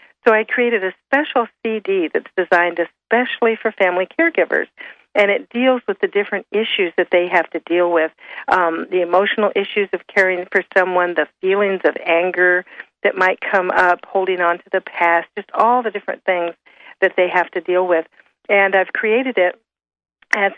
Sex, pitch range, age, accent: female, 180-215 Hz, 50-69, American